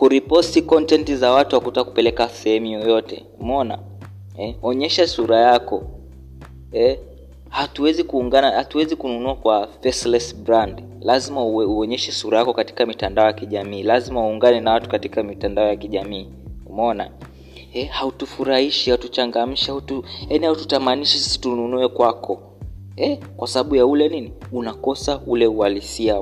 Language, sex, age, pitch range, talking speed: Swahili, male, 20-39, 105-125 Hz, 130 wpm